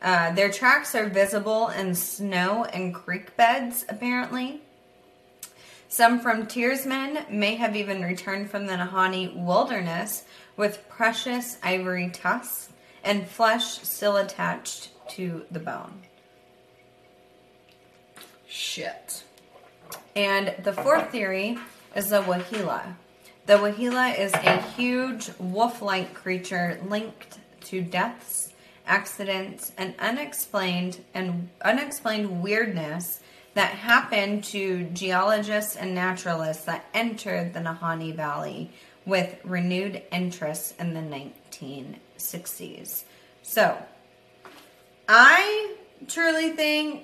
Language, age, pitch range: English, 20-39, 185-235 Hz